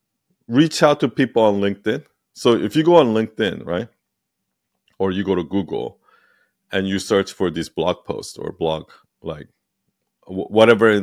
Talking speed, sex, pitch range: 160 wpm, male, 90-115 Hz